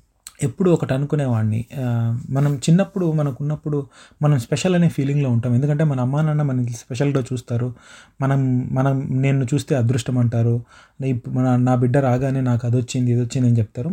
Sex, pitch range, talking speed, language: male, 125-150 Hz, 155 wpm, Telugu